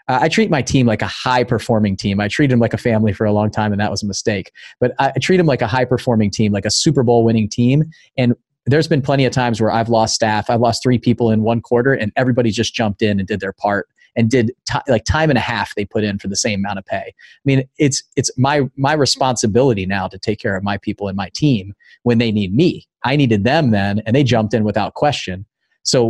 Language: English